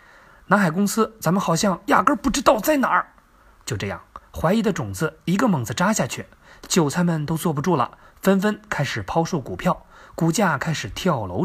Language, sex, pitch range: Chinese, male, 135-205 Hz